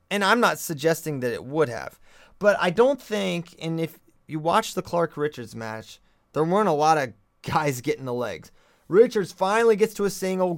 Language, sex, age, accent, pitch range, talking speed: English, male, 30-49, American, 165-205 Hz, 200 wpm